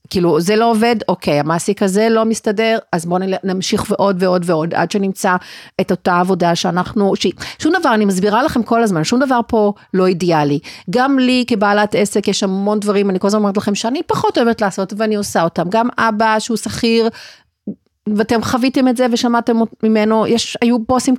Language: Hebrew